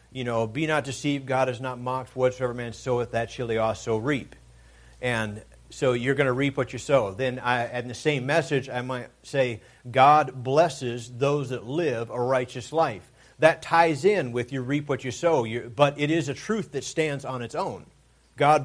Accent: American